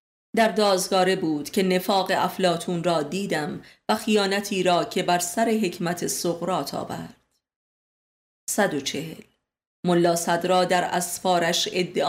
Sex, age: female, 30-49